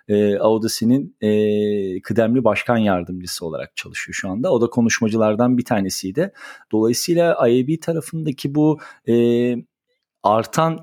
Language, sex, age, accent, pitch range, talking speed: Turkish, male, 40-59, native, 110-130 Hz, 110 wpm